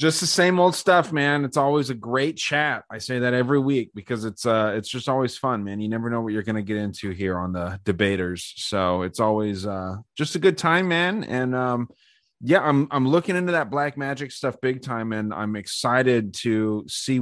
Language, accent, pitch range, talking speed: English, American, 105-130 Hz, 225 wpm